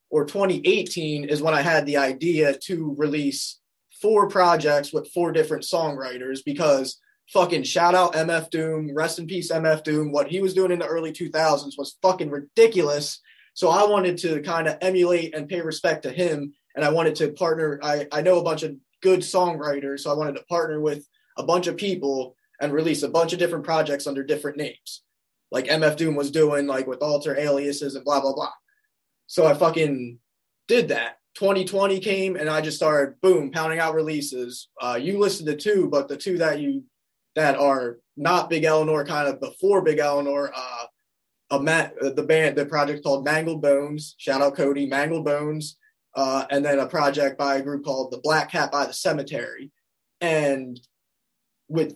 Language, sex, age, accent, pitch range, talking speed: English, male, 20-39, American, 145-175 Hz, 190 wpm